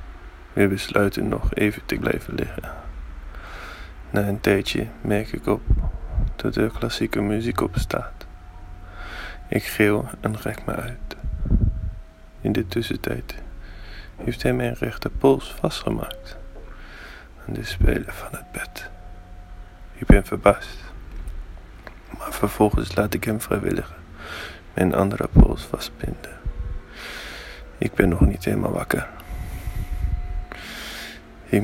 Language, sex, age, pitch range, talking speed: Dutch, male, 20-39, 70-100 Hz, 115 wpm